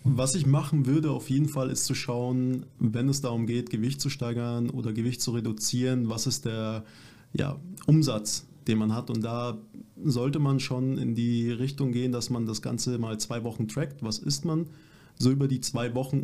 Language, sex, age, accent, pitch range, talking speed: German, male, 20-39, German, 115-140 Hz, 195 wpm